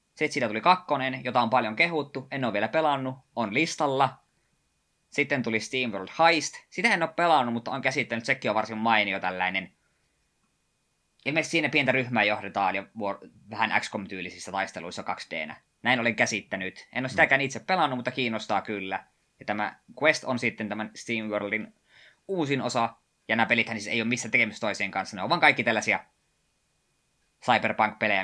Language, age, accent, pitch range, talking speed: Finnish, 20-39, native, 105-130 Hz, 165 wpm